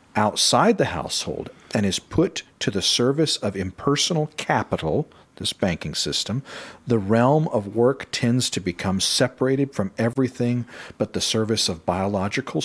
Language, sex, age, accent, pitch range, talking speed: English, male, 50-69, American, 90-115 Hz, 140 wpm